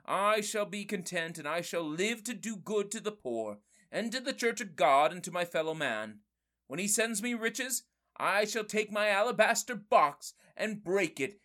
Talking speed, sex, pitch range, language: 205 wpm, male, 165-230 Hz, English